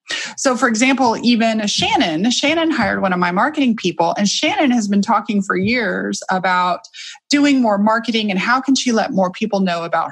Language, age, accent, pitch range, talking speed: English, 30-49, American, 200-275 Hz, 190 wpm